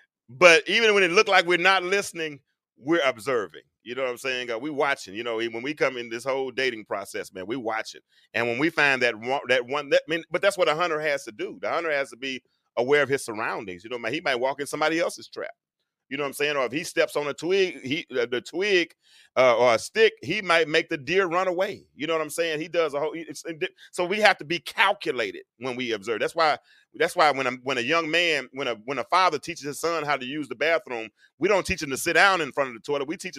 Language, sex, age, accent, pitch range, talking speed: English, male, 30-49, American, 135-190 Hz, 270 wpm